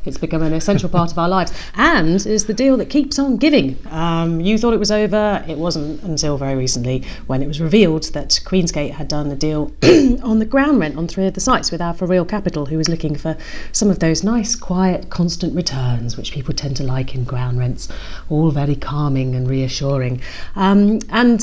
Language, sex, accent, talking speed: English, female, British, 215 wpm